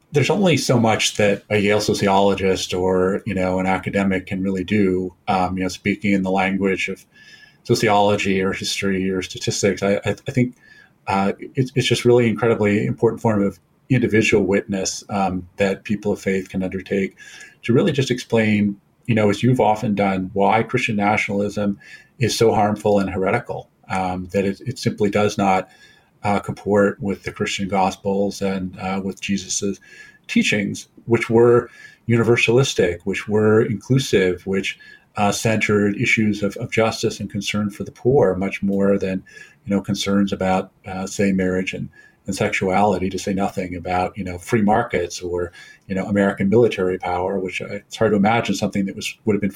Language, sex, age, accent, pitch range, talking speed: English, male, 40-59, American, 95-115 Hz, 175 wpm